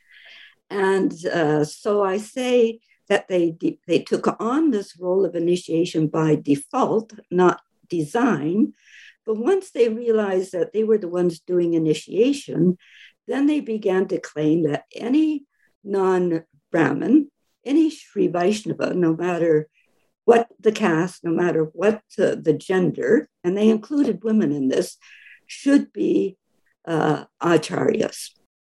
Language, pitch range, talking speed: English, 165-230 Hz, 130 wpm